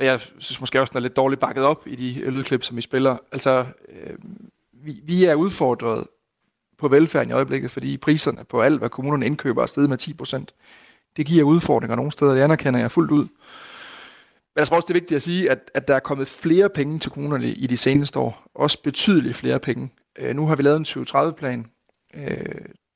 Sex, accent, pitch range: male, native, 130-150 Hz